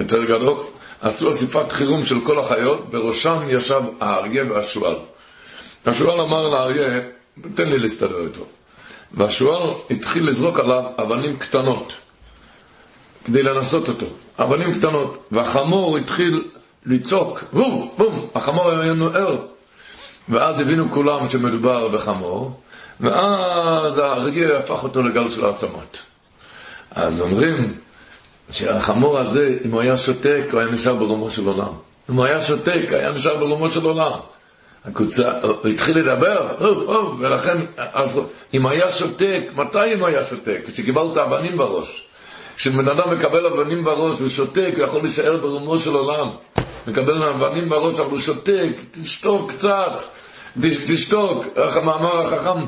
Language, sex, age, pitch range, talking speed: Hebrew, male, 60-79, 130-170 Hz, 130 wpm